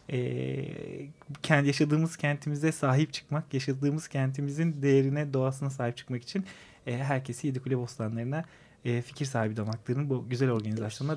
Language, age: Turkish, 30-49